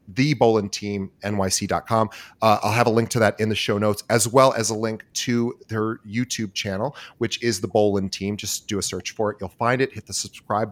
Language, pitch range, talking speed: English, 100-125 Hz, 225 wpm